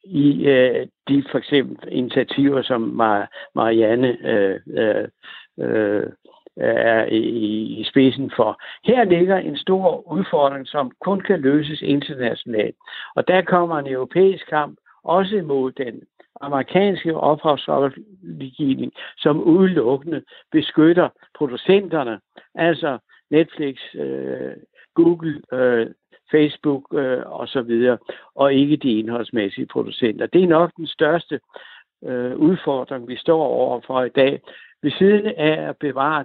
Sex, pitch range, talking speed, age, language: male, 130-165 Hz, 110 wpm, 60-79, Danish